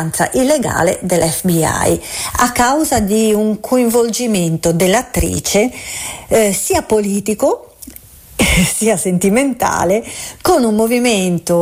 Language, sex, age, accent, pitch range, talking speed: Italian, female, 50-69, native, 170-220 Hz, 90 wpm